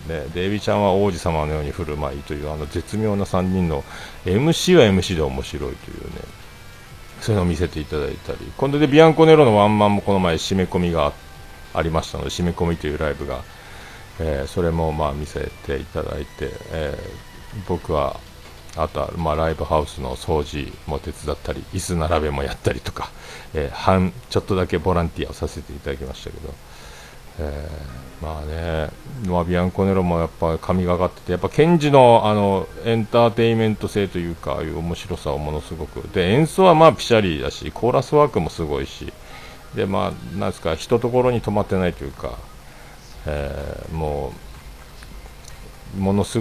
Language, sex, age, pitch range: Japanese, male, 50-69, 75-100 Hz